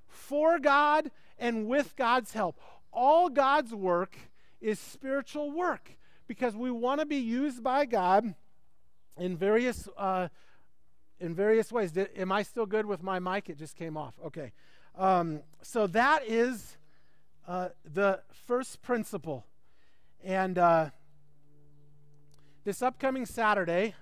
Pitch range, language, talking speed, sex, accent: 165-230 Hz, English, 125 wpm, male, American